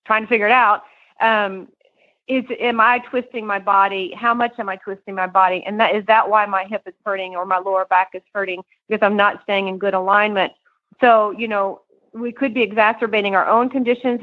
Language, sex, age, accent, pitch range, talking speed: English, female, 40-59, American, 195-235 Hz, 215 wpm